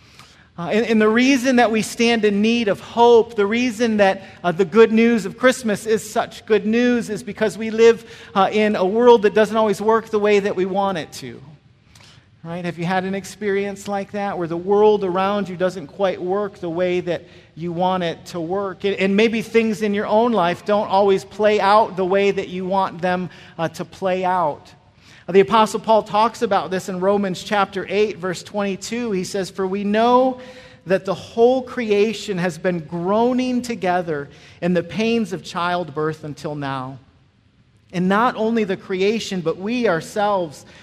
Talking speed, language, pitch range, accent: 190 wpm, English, 170-215 Hz, American